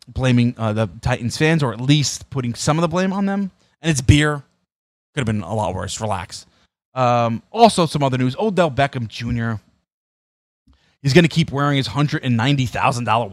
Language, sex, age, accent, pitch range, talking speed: English, male, 20-39, American, 110-145 Hz, 180 wpm